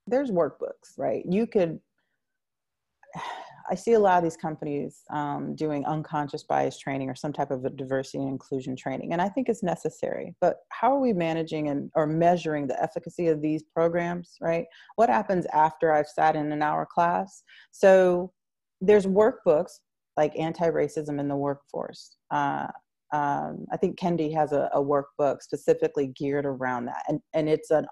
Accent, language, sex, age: American, English, female, 30-49